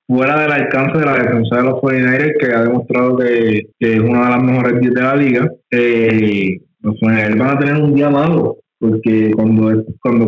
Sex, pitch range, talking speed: male, 115-145 Hz, 200 wpm